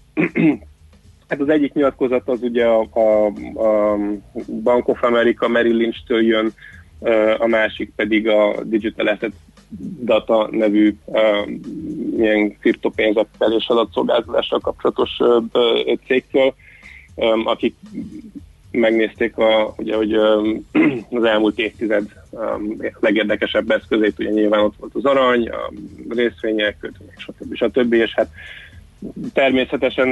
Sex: male